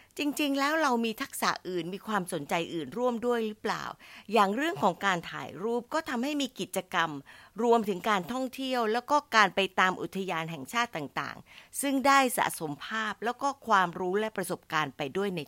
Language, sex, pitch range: Thai, female, 175-245 Hz